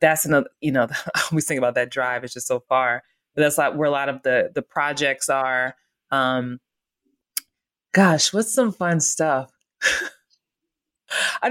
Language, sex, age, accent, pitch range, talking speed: English, female, 20-39, American, 140-180 Hz, 160 wpm